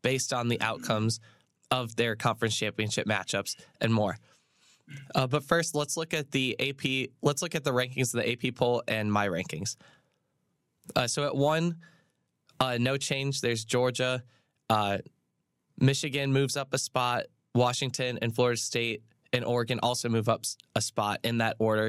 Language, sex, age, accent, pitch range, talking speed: English, male, 10-29, American, 115-130 Hz, 165 wpm